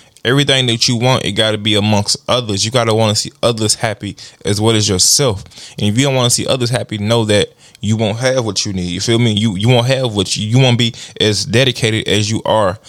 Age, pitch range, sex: 20-39, 105-130 Hz, male